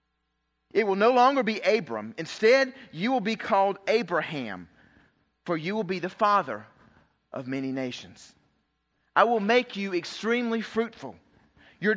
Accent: American